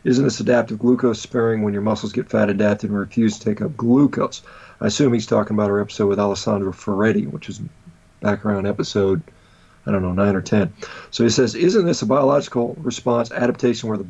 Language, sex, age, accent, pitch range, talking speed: English, male, 40-59, American, 105-125 Hz, 205 wpm